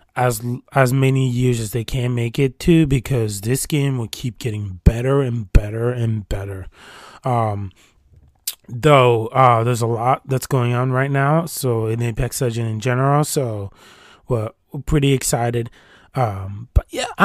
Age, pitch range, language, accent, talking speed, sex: 20-39, 115-140 Hz, English, American, 155 wpm, male